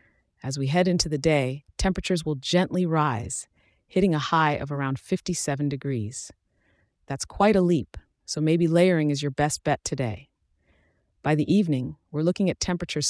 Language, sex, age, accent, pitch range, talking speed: English, female, 30-49, American, 135-175 Hz, 165 wpm